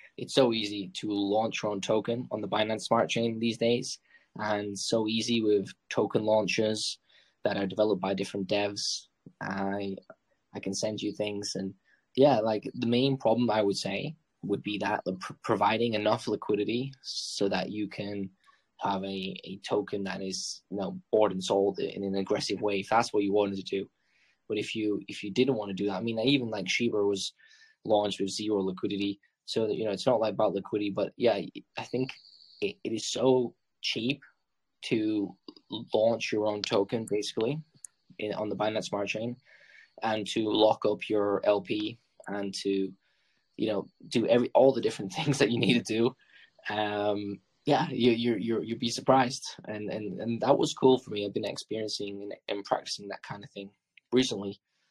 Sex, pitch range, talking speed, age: male, 100-115 Hz, 185 wpm, 10-29